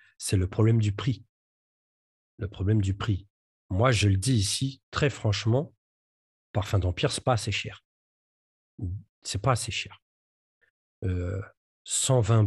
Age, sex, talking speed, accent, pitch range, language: 40-59, male, 145 wpm, French, 100-125 Hz, French